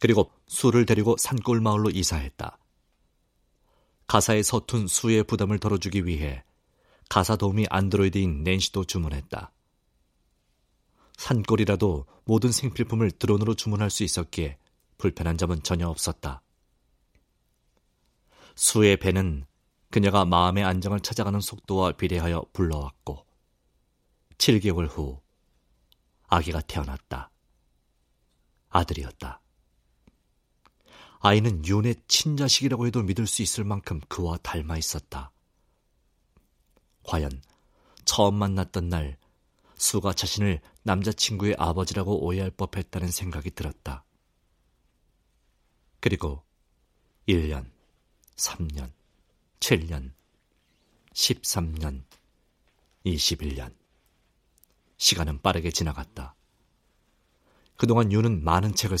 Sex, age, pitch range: male, 40-59, 75-105 Hz